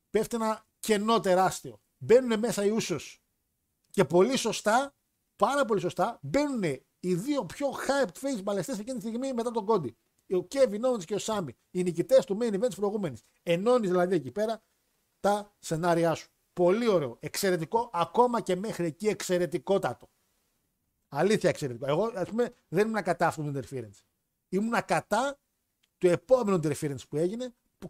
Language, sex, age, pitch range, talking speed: Greek, male, 50-69, 165-215 Hz, 160 wpm